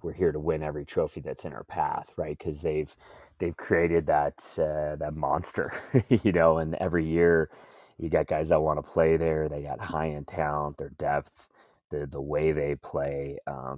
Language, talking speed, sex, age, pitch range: English, 195 wpm, male, 30-49, 75-85 Hz